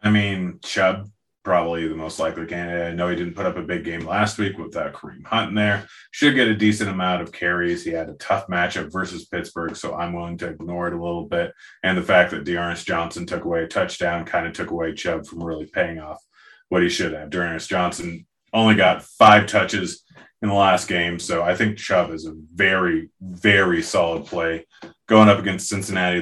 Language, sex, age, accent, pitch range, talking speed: English, male, 30-49, American, 85-105 Hz, 215 wpm